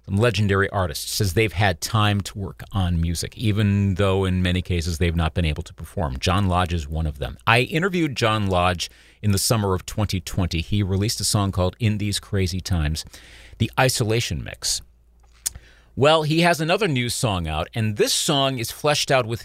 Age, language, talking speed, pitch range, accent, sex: 40-59, English, 190 wpm, 95-145 Hz, American, male